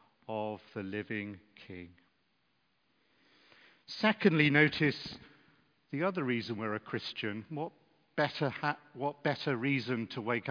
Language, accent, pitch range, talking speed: English, British, 120-150 Hz, 115 wpm